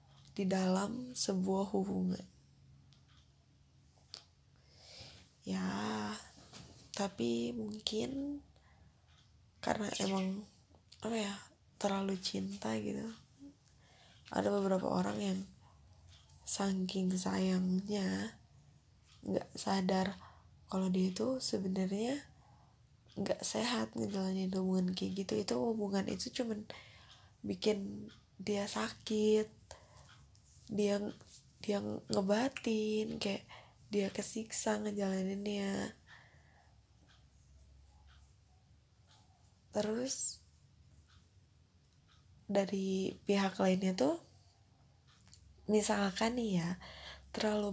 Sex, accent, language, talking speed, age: female, native, Indonesian, 70 wpm, 10-29